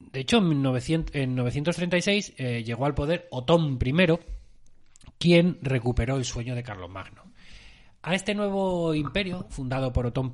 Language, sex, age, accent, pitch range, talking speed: Spanish, male, 30-49, Spanish, 110-150 Hz, 140 wpm